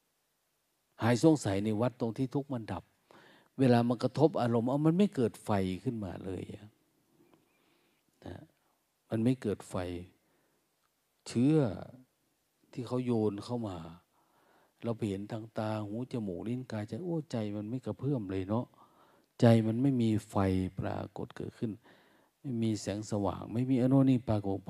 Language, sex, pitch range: Thai, male, 100-125 Hz